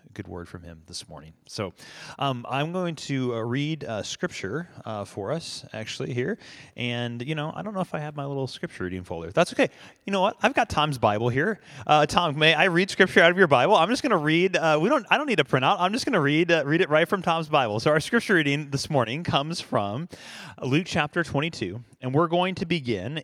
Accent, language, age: American, English, 30-49